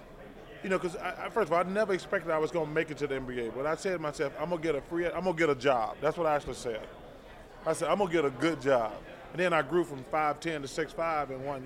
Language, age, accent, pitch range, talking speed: English, 20-39, American, 155-190 Hz, 280 wpm